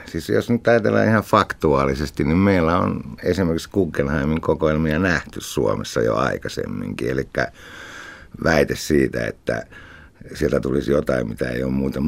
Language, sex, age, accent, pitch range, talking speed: Finnish, male, 60-79, native, 70-95 Hz, 135 wpm